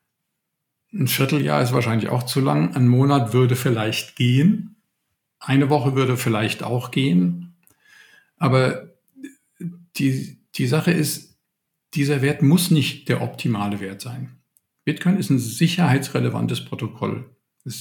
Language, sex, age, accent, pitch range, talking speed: German, male, 50-69, German, 120-150 Hz, 125 wpm